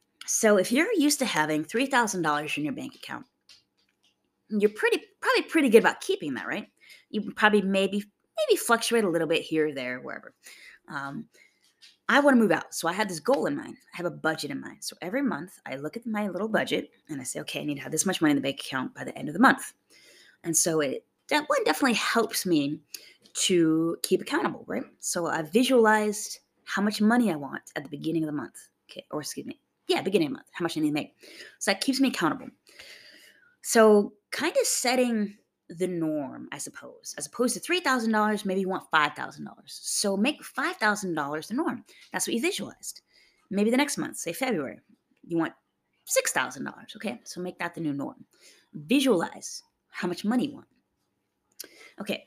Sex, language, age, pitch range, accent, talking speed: female, English, 20-39, 165-260 Hz, American, 200 wpm